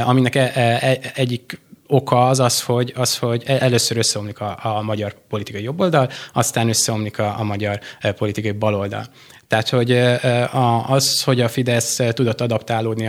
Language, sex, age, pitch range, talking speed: Hungarian, male, 20-39, 105-125 Hz, 120 wpm